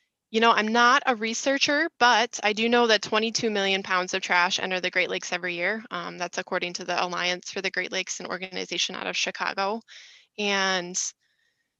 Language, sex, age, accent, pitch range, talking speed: English, female, 20-39, American, 180-220 Hz, 195 wpm